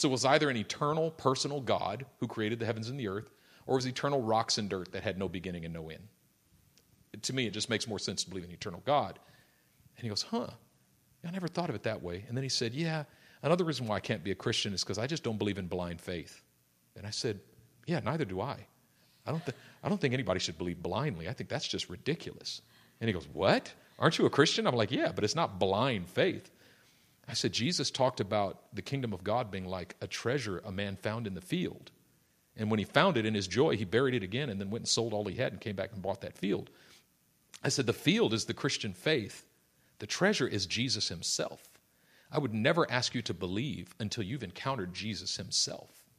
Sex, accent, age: male, American, 40-59